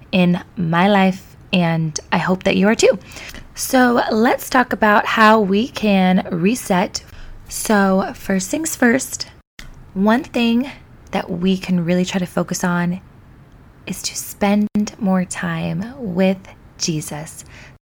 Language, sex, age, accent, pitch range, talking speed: English, female, 20-39, American, 175-210 Hz, 130 wpm